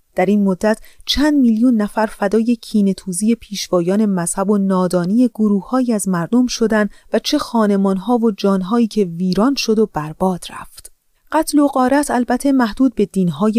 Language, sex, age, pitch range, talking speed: Persian, female, 30-49, 190-250 Hz, 150 wpm